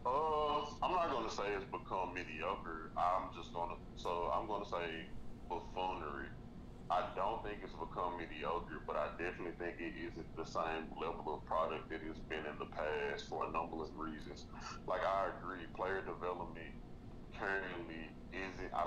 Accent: American